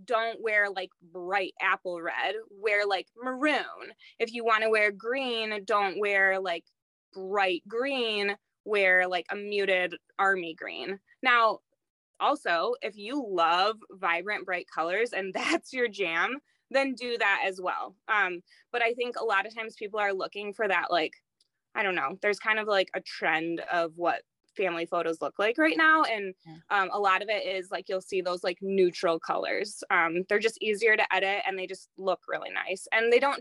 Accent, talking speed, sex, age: American, 185 wpm, female, 20-39